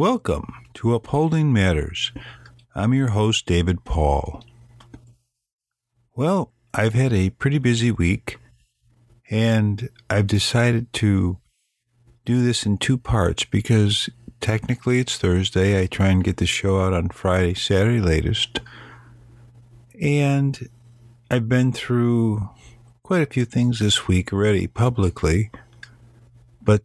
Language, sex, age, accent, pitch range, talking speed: English, male, 50-69, American, 95-120 Hz, 120 wpm